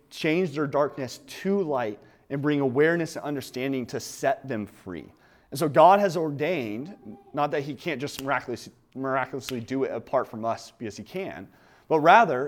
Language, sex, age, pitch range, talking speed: English, male, 30-49, 130-165 Hz, 175 wpm